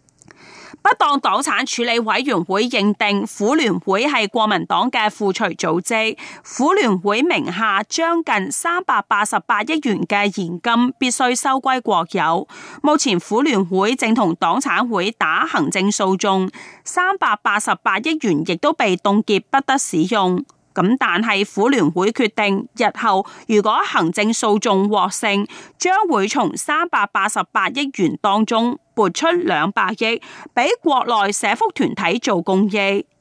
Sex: female